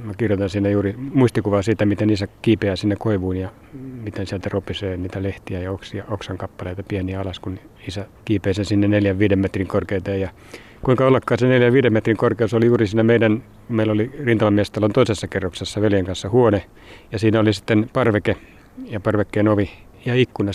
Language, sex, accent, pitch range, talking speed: Finnish, male, native, 95-115 Hz, 170 wpm